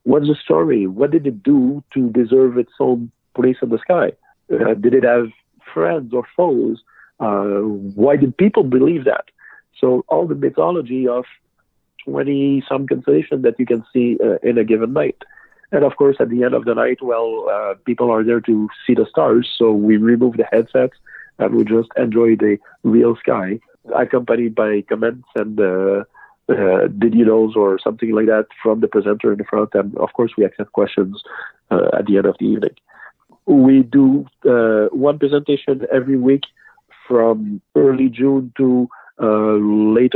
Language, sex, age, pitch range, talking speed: English, male, 50-69, 110-135 Hz, 175 wpm